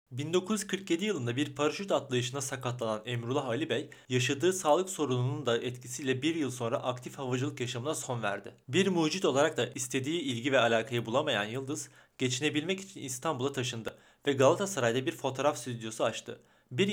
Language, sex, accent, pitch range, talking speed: Turkish, male, native, 115-150 Hz, 150 wpm